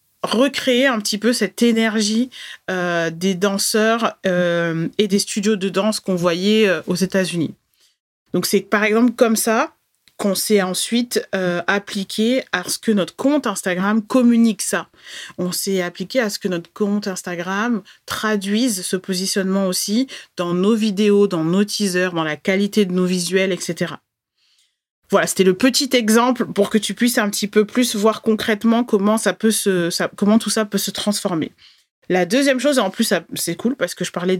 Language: French